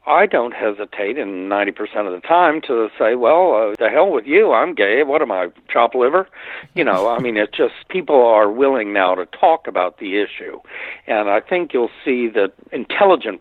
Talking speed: 200 wpm